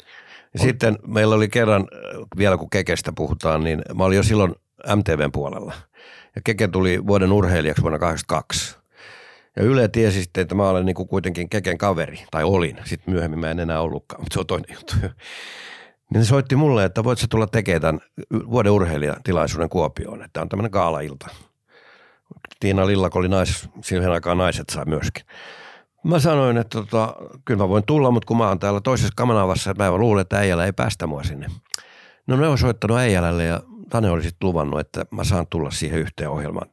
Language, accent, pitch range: Finnish, native, 80-105 Hz